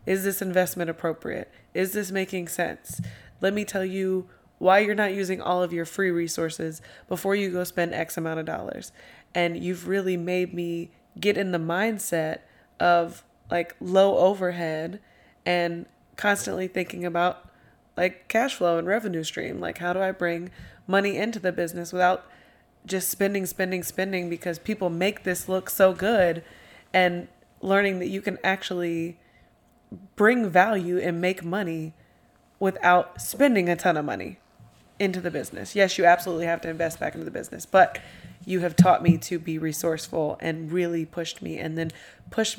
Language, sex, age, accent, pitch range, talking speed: English, female, 20-39, American, 170-190 Hz, 165 wpm